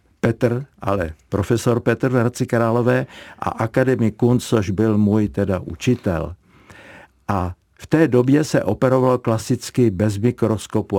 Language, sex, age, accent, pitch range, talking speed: Czech, male, 60-79, native, 100-120 Hz, 125 wpm